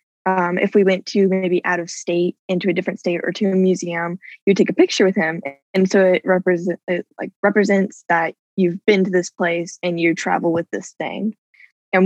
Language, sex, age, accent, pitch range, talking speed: English, female, 10-29, American, 180-215 Hz, 215 wpm